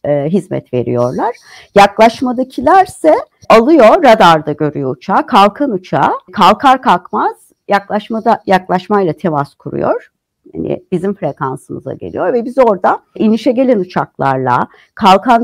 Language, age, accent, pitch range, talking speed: Turkish, 60-79, native, 160-225 Hz, 100 wpm